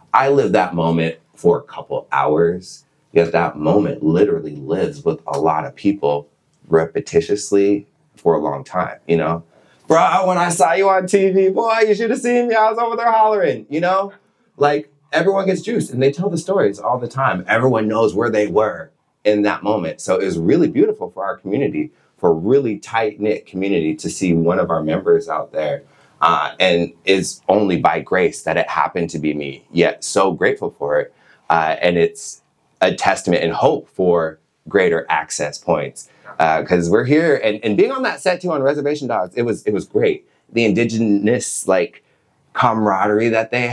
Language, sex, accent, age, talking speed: English, male, American, 30-49, 190 wpm